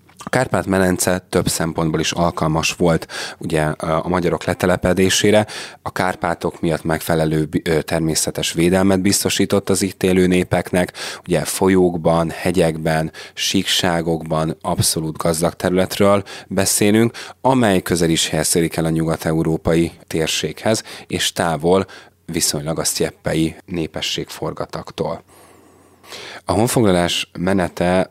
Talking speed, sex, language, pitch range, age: 100 wpm, male, Hungarian, 80-95 Hz, 30-49